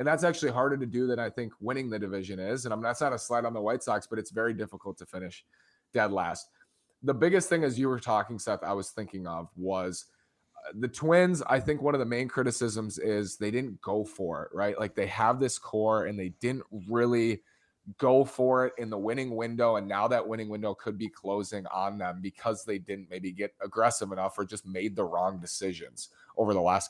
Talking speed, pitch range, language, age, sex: 230 wpm, 100-125 Hz, English, 20-39, male